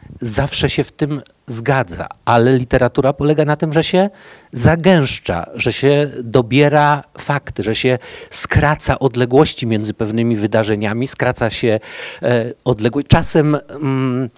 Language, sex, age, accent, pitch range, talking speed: Polish, male, 50-69, native, 120-155 Hz, 125 wpm